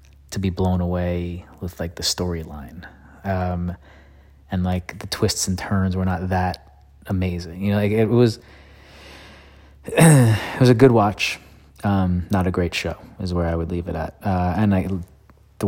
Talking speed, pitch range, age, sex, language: 170 wpm, 85-100 Hz, 30-49, male, English